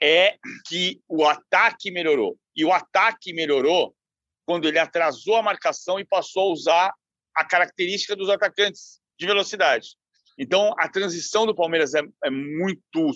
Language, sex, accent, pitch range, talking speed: Portuguese, male, Brazilian, 160-210 Hz, 145 wpm